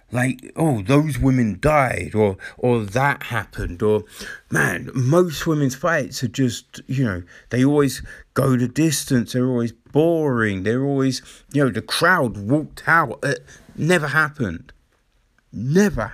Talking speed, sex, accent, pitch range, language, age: 140 wpm, male, British, 120-150 Hz, English, 50-69